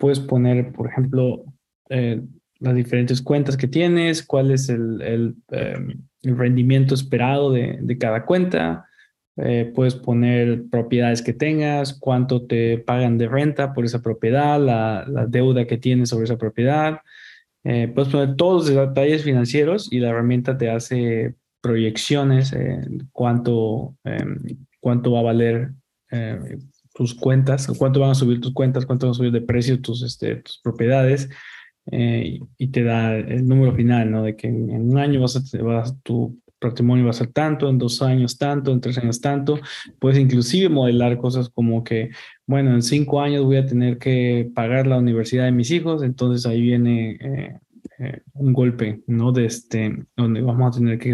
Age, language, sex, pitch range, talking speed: 20-39, Spanish, male, 120-135 Hz, 175 wpm